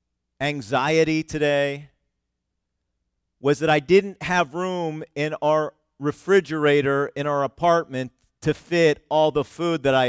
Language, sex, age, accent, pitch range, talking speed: English, male, 40-59, American, 85-140 Hz, 125 wpm